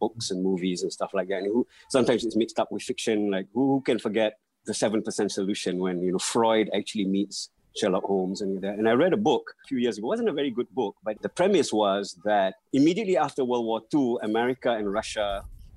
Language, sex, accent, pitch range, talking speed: English, male, Malaysian, 95-125 Hz, 230 wpm